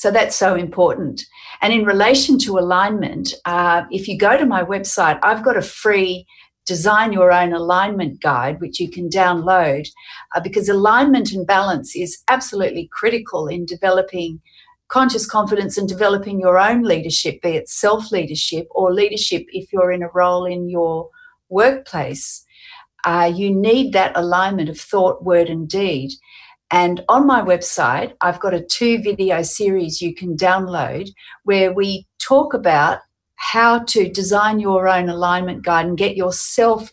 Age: 50-69